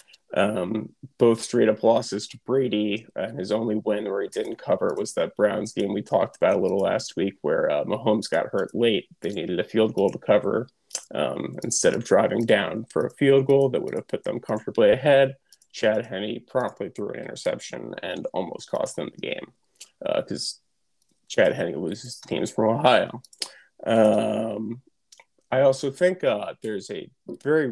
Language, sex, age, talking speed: English, male, 20-39, 175 wpm